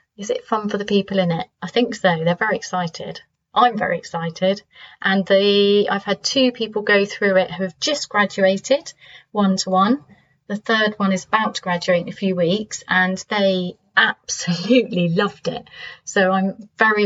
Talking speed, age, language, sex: 180 wpm, 30-49, English, female